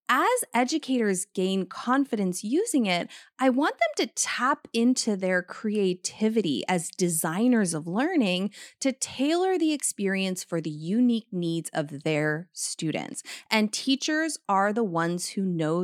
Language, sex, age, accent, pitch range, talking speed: English, female, 30-49, American, 175-250 Hz, 135 wpm